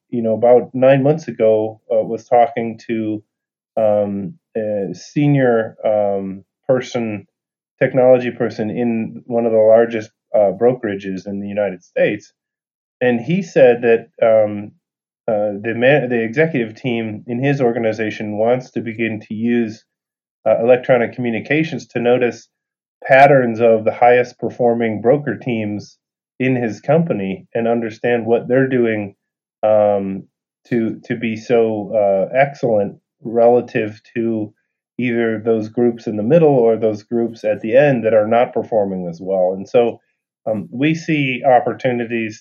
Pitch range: 105-120 Hz